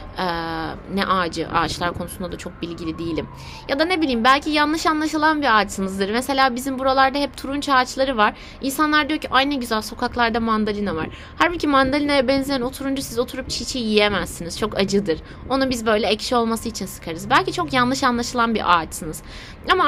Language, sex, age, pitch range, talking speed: Turkish, female, 30-49, 215-280 Hz, 175 wpm